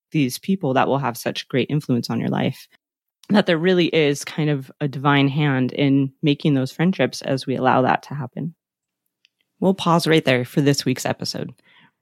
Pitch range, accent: 135-175 Hz, American